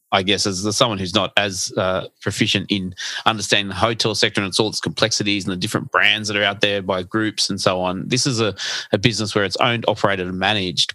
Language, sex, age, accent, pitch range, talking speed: English, male, 30-49, Australian, 95-110 Hz, 235 wpm